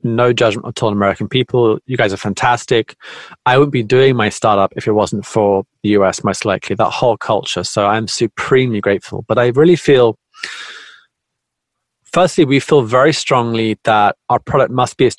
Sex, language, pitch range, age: male, English, 105-135 Hz, 30-49